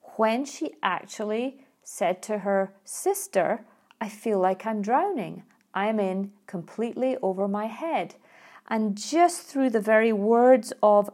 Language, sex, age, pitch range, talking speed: English, female, 40-59, 190-235 Hz, 135 wpm